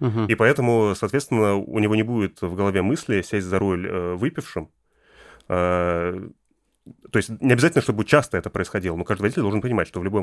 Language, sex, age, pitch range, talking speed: Russian, male, 30-49, 95-110 Hz, 175 wpm